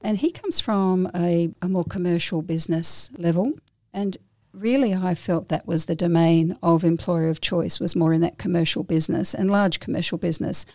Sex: female